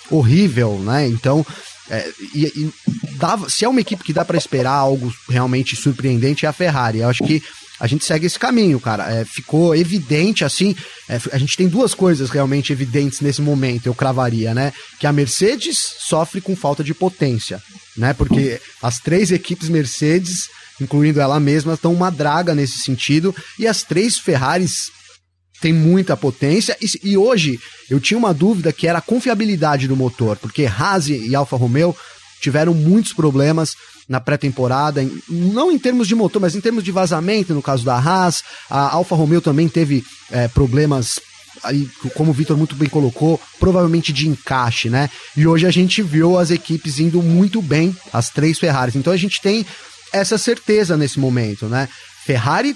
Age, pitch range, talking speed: 20-39, 135-180 Hz, 165 wpm